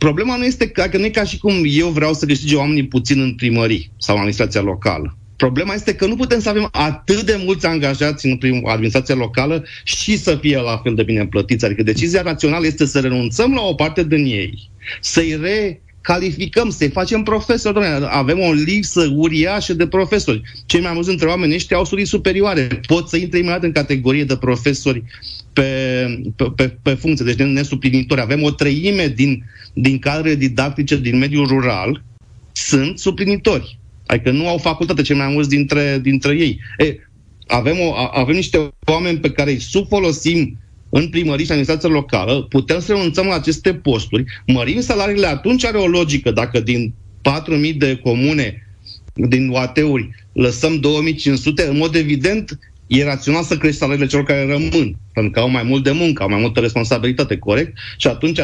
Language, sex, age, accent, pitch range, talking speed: Romanian, male, 30-49, native, 125-165 Hz, 180 wpm